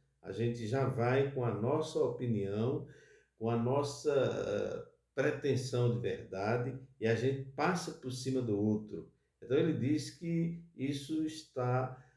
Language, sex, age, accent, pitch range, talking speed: Portuguese, male, 50-69, Brazilian, 110-135 Hz, 140 wpm